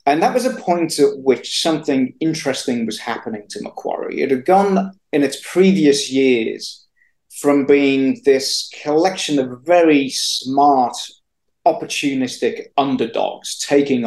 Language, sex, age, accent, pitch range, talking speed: English, male, 40-59, British, 120-160 Hz, 130 wpm